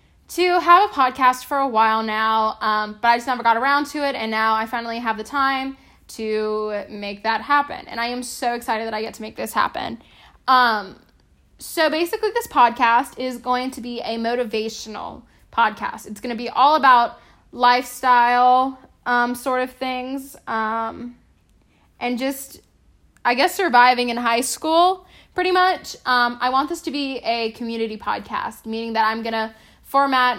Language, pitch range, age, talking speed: English, 220-255 Hz, 10-29, 175 wpm